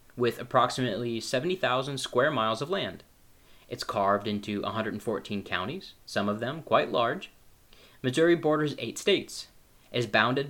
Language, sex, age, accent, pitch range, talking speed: English, male, 30-49, American, 105-140 Hz, 130 wpm